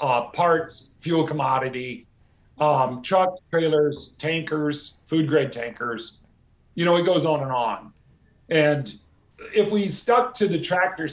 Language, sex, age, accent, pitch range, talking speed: English, male, 50-69, American, 135-165 Hz, 135 wpm